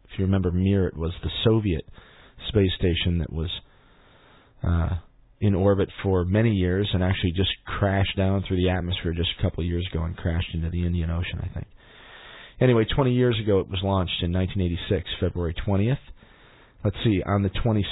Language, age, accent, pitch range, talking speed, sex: English, 40-59, American, 85-100 Hz, 180 wpm, male